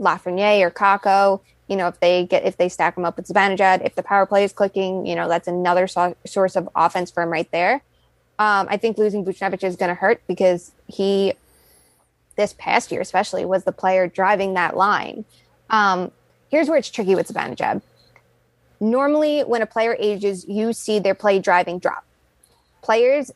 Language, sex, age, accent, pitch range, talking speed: English, female, 20-39, American, 185-220 Hz, 190 wpm